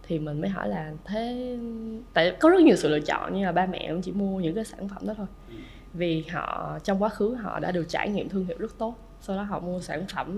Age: 10-29